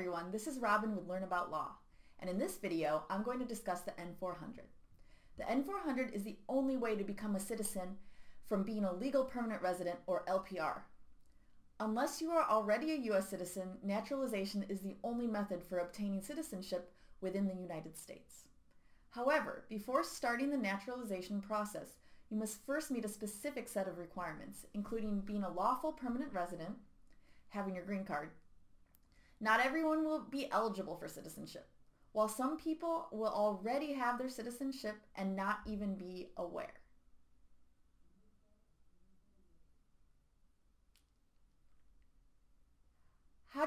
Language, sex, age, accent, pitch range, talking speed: English, female, 30-49, American, 185-245 Hz, 140 wpm